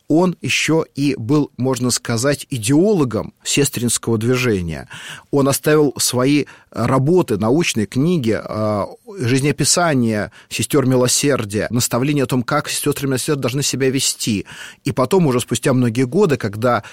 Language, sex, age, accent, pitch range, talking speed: Russian, male, 30-49, native, 115-145 Hz, 120 wpm